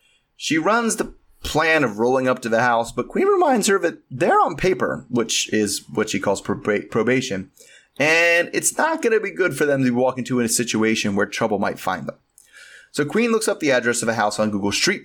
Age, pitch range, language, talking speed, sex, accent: 30-49, 110-160 Hz, English, 220 wpm, male, American